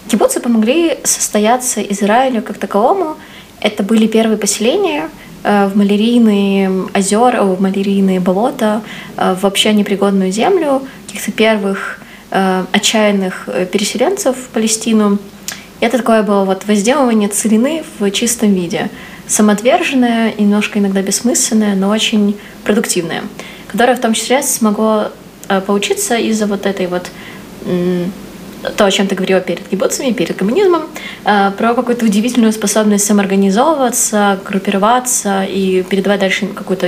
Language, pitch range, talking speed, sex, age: Ukrainian, 195-230 Hz, 115 wpm, female, 20-39